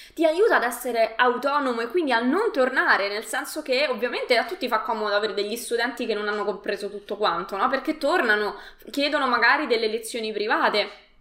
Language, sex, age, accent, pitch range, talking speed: Italian, female, 20-39, native, 210-265 Hz, 185 wpm